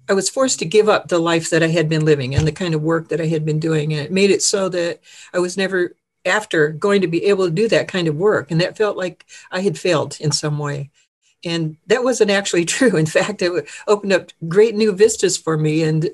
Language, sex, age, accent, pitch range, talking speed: English, female, 60-79, American, 160-210 Hz, 255 wpm